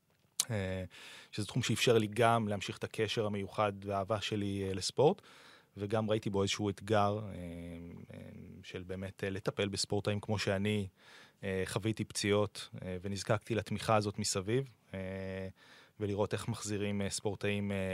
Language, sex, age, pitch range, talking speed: Hebrew, male, 20-39, 95-110 Hz, 110 wpm